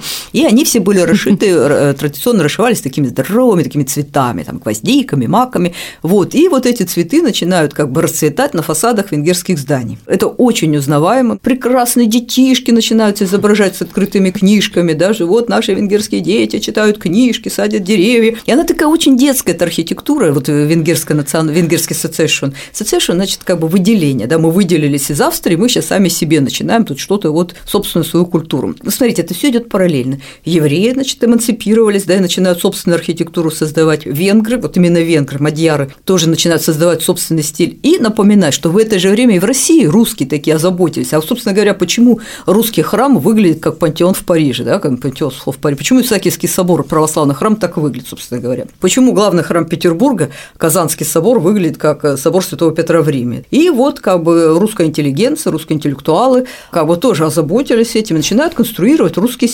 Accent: native